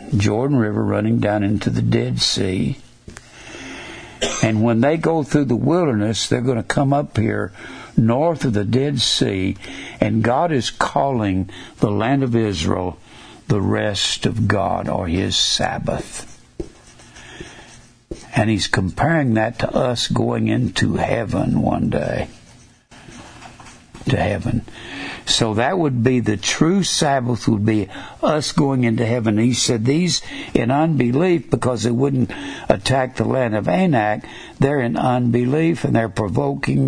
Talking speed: 140 wpm